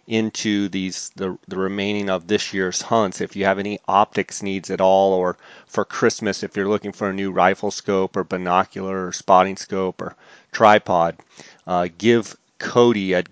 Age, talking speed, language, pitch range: 30-49, 175 wpm, English, 95-105 Hz